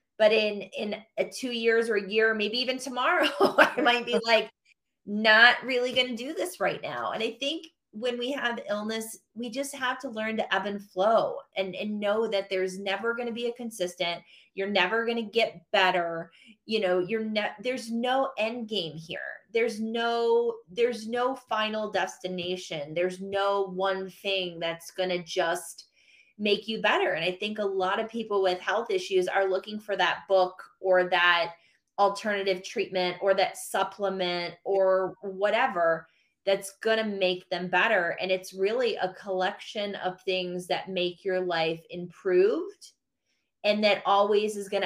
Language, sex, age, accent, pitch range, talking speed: English, female, 30-49, American, 185-225 Hz, 175 wpm